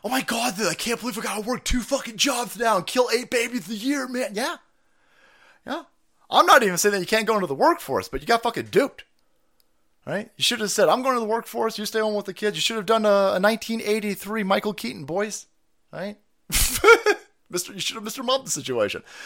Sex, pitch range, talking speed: male, 170-240 Hz, 235 wpm